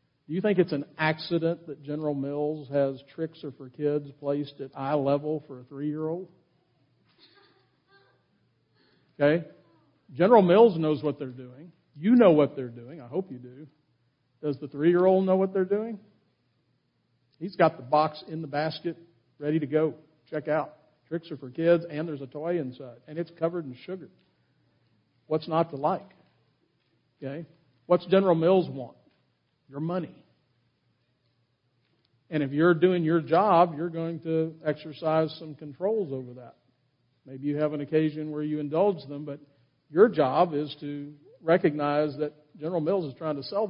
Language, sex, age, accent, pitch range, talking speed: English, male, 50-69, American, 140-170 Hz, 160 wpm